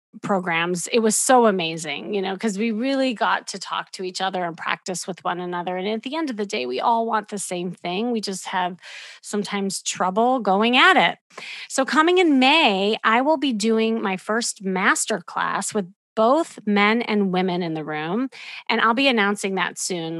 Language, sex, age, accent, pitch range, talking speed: English, female, 30-49, American, 180-230 Hz, 200 wpm